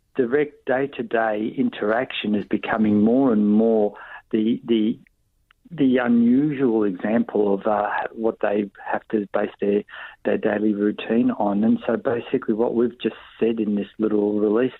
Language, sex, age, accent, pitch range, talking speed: English, male, 60-79, Australian, 110-140 Hz, 145 wpm